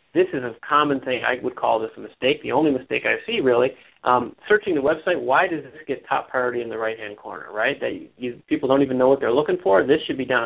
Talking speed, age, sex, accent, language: 260 wpm, 30-49, male, American, English